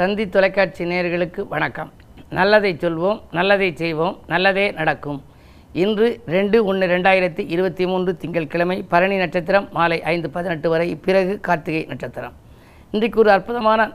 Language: Tamil